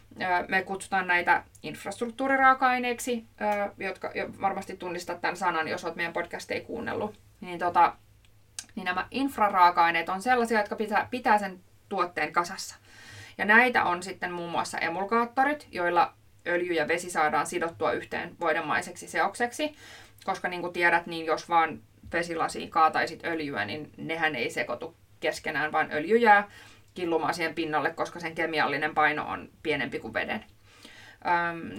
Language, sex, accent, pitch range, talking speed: Finnish, female, native, 160-200 Hz, 135 wpm